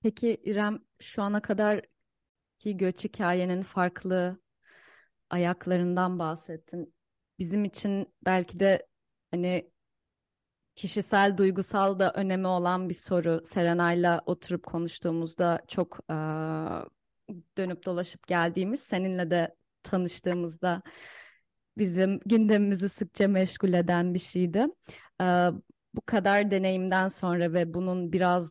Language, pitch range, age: Turkish, 170-195 Hz, 30-49